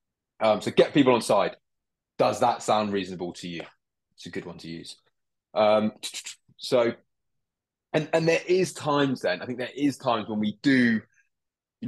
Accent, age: British, 20-39